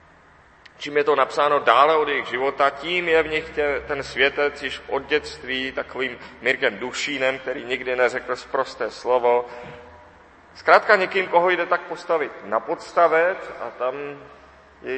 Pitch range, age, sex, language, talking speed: 125-145 Hz, 30-49, male, Czech, 145 wpm